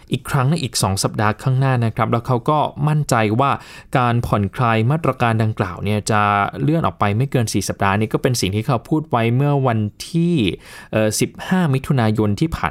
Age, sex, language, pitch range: 20-39, male, Thai, 105-150 Hz